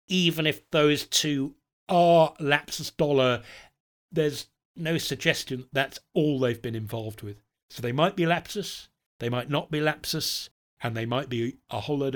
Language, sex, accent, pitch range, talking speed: English, male, British, 120-150 Hz, 165 wpm